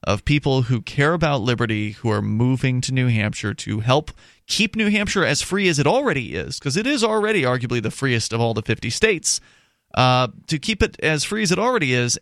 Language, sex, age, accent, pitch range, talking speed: English, male, 30-49, American, 110-140 Hz, 220 wpm